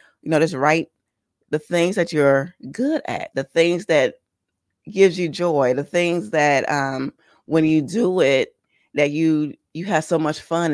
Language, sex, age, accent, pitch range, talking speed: English, female, 30-49, American, 145-195 Hz, 175 wpm